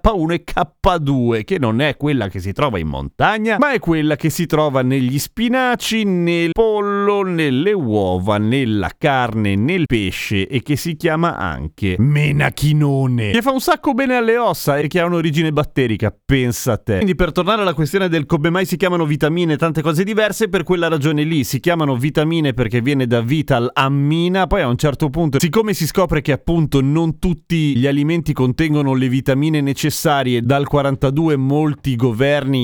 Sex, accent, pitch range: male, native, 110-165 Hz